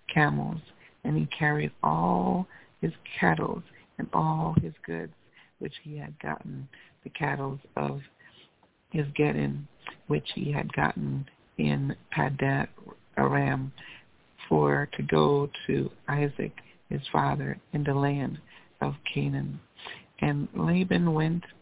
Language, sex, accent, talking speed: English, female, American, 115 wpm